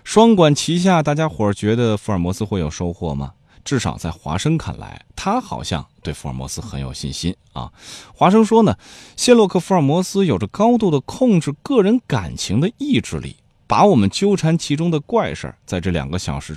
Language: Chinese